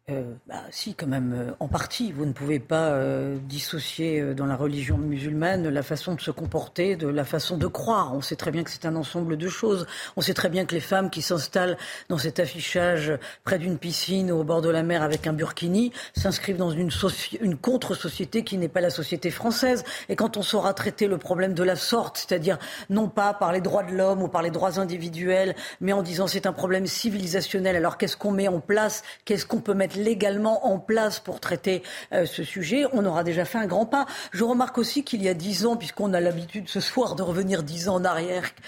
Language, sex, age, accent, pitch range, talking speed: French, female, 40-59, French, 175-225 Hz, 230 wpm